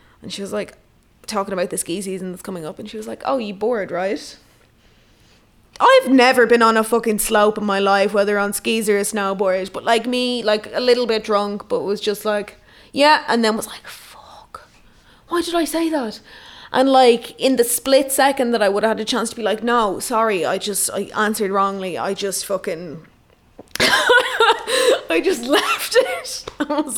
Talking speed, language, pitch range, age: 200 wpm, English, 200-250 Hz, 20-39